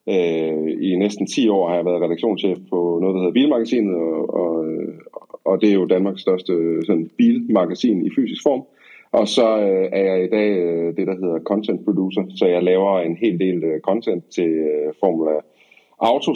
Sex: male